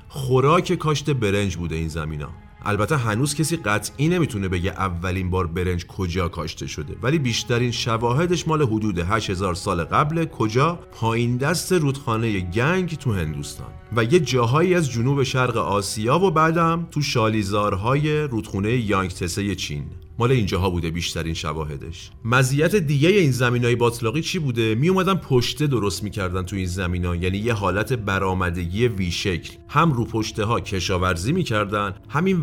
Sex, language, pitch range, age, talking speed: male, Persian, 95-130 Hz, 40-59, 150 wpm